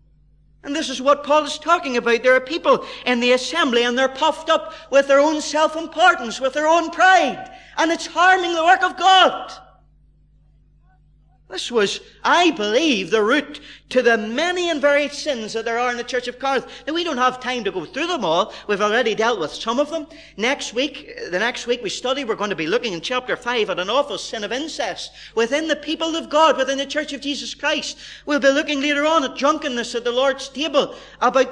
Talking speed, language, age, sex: 215 wpm, English, 40-59, male